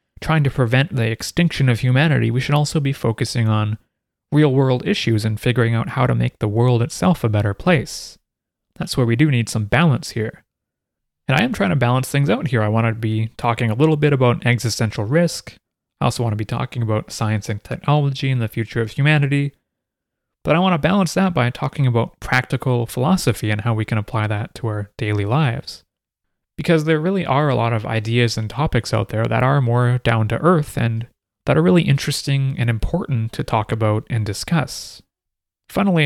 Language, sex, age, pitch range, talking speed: English, male, 30-49, 110-145 Hz, 205 wpm